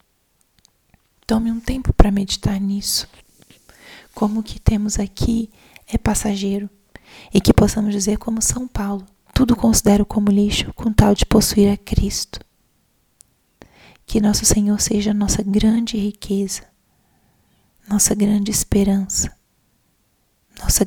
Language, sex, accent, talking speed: Portuguese, female, Brazilian, 120 wpm